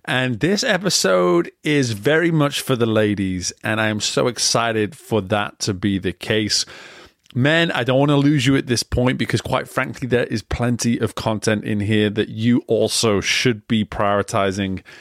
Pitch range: 105-135 Hz